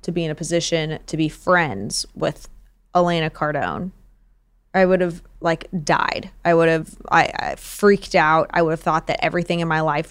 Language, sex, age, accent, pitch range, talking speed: English, female, 20-39, American, 170-205 Hz, 190 wpm